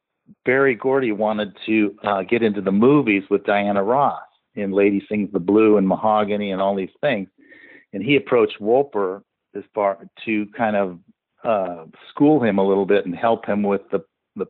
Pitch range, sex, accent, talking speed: 100-125 Hz, male, American, 180 wpm